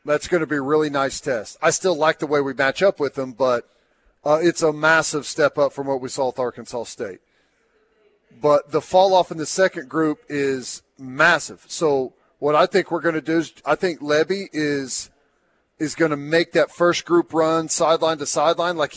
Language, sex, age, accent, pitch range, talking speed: English, male, 40-59, American, 145-170 Hz, 210 wpm